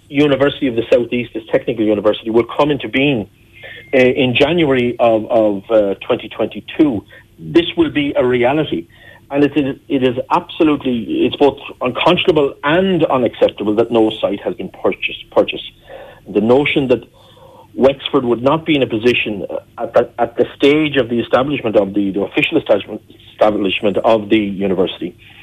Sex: male